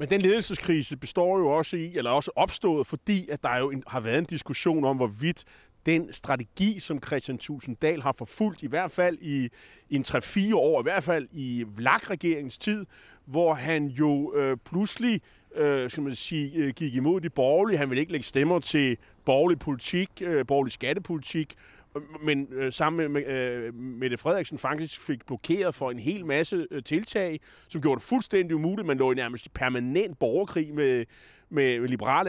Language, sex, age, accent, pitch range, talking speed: Danish, male, 30-49, native, 135-180 Hz, 180 wpm